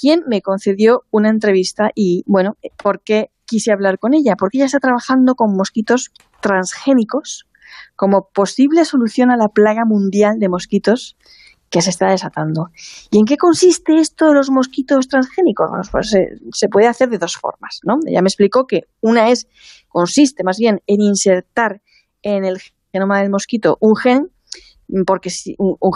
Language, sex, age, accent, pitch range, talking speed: Spanish, female, 20-39, Spanish, 195-255 Hz, 165 wpm